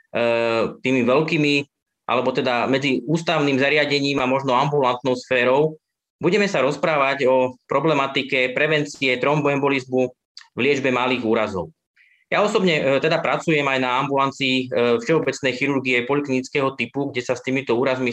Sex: male